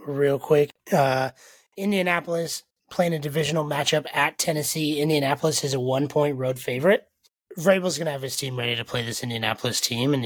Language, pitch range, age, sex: English, 115-140 Hz, 30-49, male